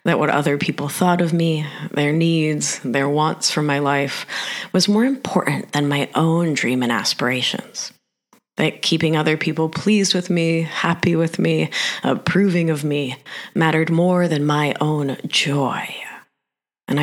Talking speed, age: 150 wpm, 30-49